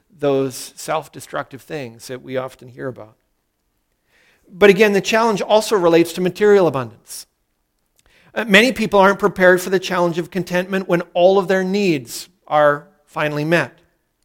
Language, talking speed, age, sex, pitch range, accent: English, 145 wpm, 50-69, male, 160-215 Hz, American